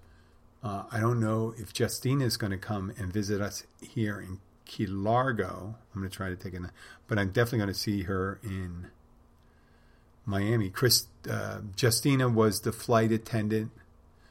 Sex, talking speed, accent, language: male, 170 wpm, American, English